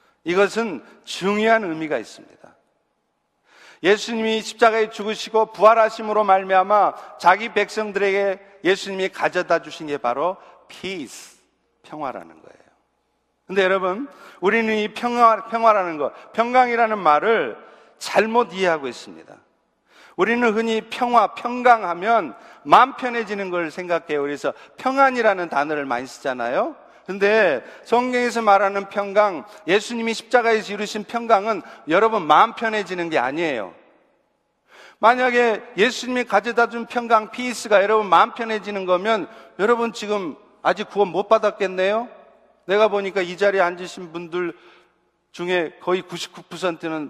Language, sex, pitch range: Korean, male, 175-230 Hz